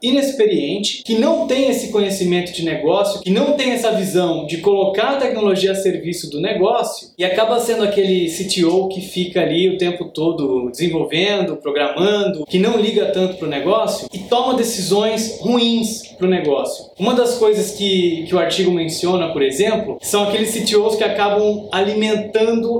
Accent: Brazilian